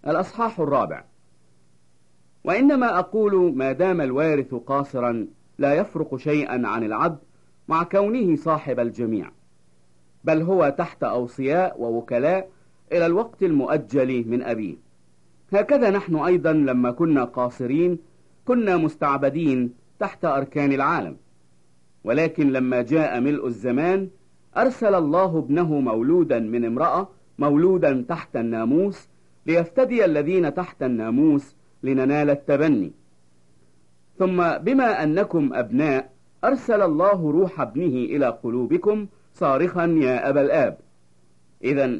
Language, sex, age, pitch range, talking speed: English, male, 50-69, 110-180 Hz, 105 wpm